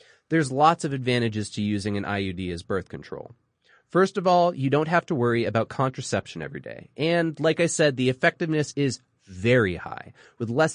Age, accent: 30-49, American